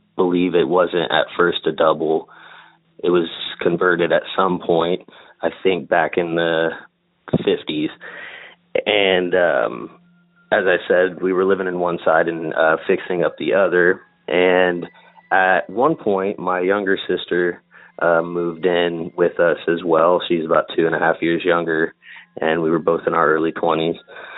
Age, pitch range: 30-49, 85-110 Hz